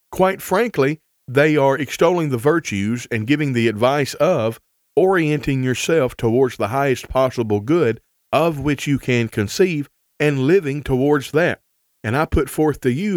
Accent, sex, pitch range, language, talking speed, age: American, male, 120-155 Hz, English, 155 wpm, 40-59